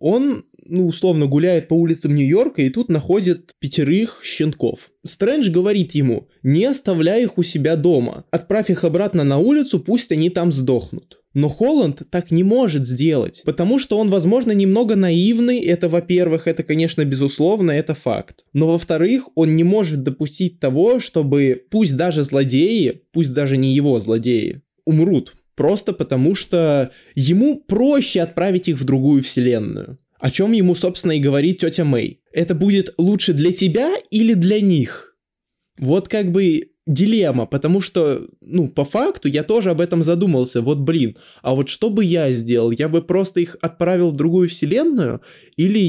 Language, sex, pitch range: Russian, male, 150-195 Hz